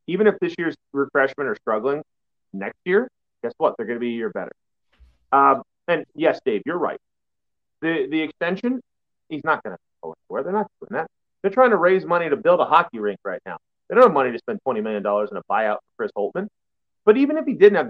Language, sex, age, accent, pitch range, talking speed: English, male, 30-49, American, 130-195 Hz, 230 wpm